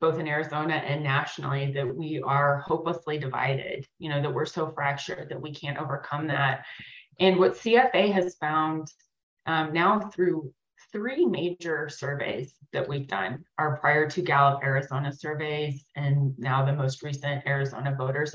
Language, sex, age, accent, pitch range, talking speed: English, female, 30-49, American, 140-170 Hz, 155 wpm